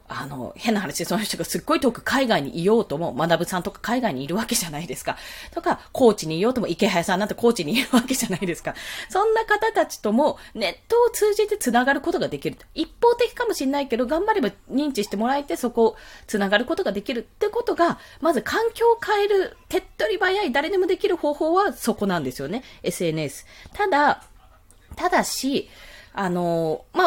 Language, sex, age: Japanese, female, 20-39